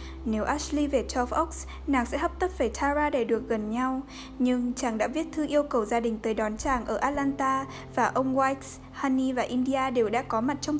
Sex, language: female, Vietnamese